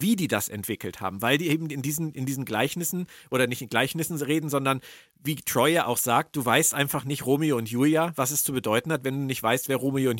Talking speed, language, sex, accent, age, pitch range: 255 wpm, German, male, German, 40-59, 125-170 Hz